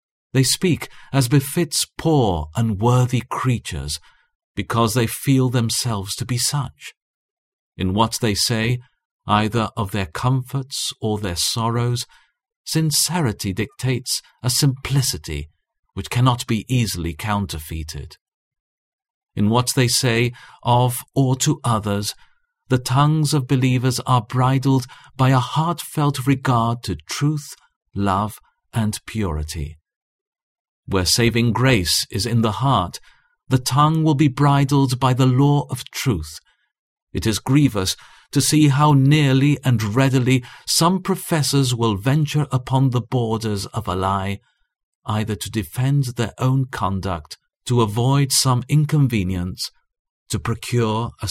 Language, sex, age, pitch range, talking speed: English, male, 50-69, 105-135 Hz, 125 wpm